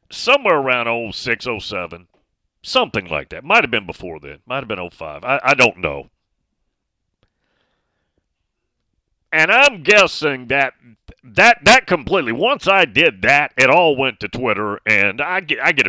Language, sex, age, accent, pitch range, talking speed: English, male, 40-59, American, 110-150 Hz, 155 wpm